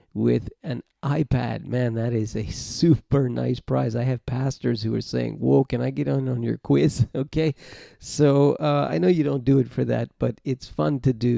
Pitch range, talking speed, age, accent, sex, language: 115-135 Hz, 205 wpm, 40-59, American, male, English